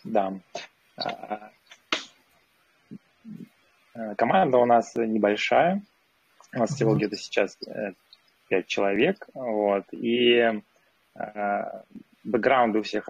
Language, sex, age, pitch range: Russian, male, 20-39, 105-120 Hz